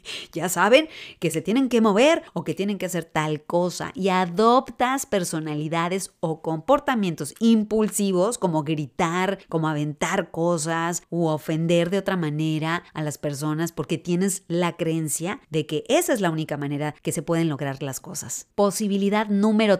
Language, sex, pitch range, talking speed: Spanish, female, 160-200 Hz, 160 wpm